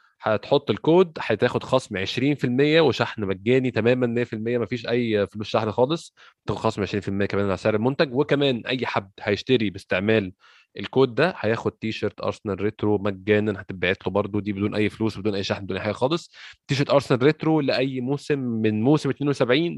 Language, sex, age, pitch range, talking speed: Arabic, male, 20-39, 100-125 Hz, 165 wpm